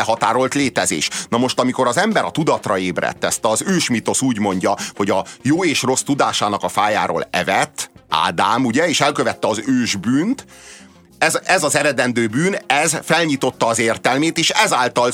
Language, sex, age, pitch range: Hungarian, male, 30-49, 95-130 Hz